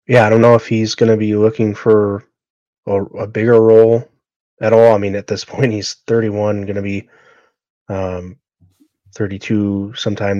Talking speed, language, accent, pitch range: 165 wpm, English, American, 95-110 Hz